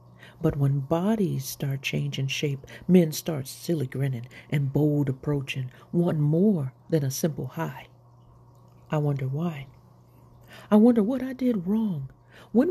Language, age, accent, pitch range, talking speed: English, 50-69, American, 135-185 Hz, 135 wpm